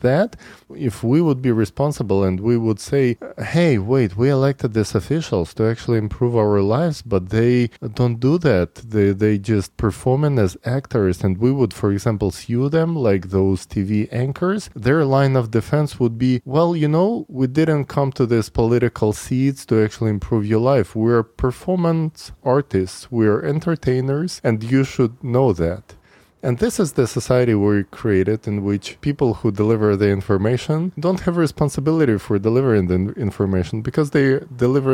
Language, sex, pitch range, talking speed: English, male, 105-140 Hz, 170 wpm